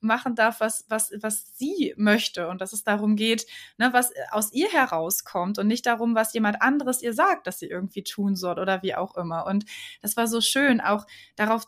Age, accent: 20-39, German